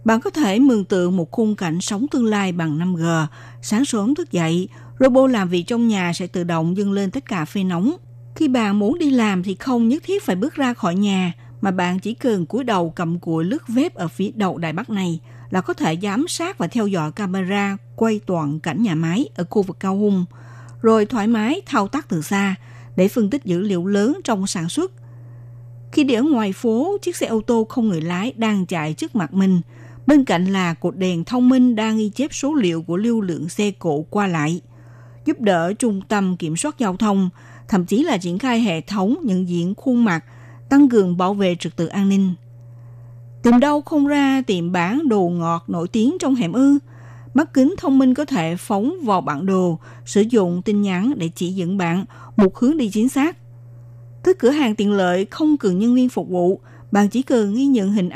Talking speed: 220 wpm